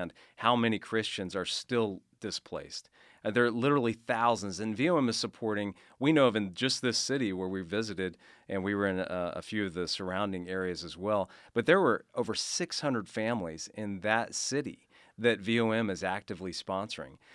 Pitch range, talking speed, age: 90-110 Hz, 180 wpm, 40-59